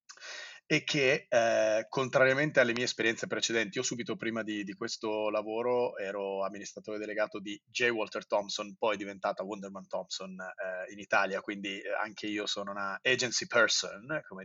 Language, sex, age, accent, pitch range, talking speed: Italian, male, 30-49, native, 105-120 Hz, 155 wpm